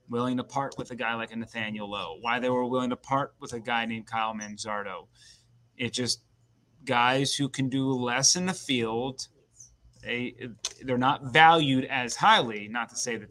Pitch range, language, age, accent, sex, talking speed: 120-135 Hz, English, 30-49, American, male, 190 wpm